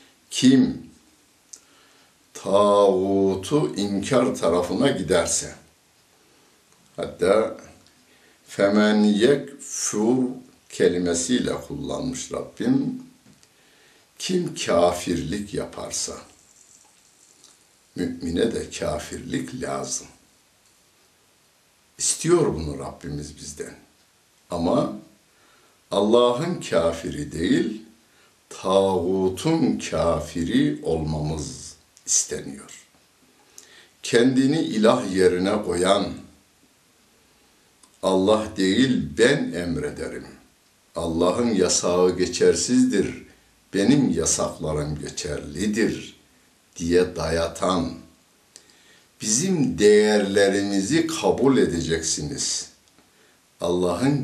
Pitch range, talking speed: 85-130 Hz, 55 wpm